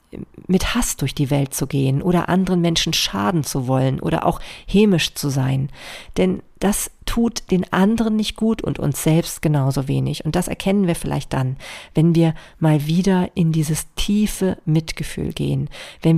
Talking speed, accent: 170 wpm, German